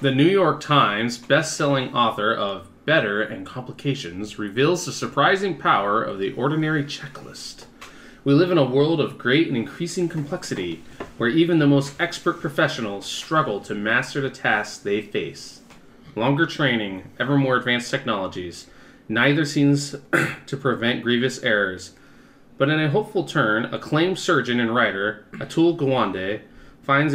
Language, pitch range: English, 115-160 Hz